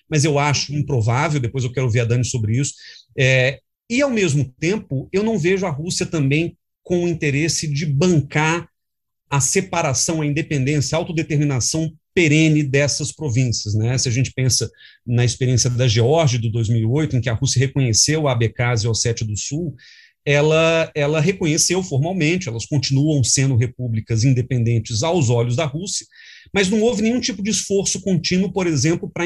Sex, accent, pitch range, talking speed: male, Brazilian, 130-160 Hz, 170 wpm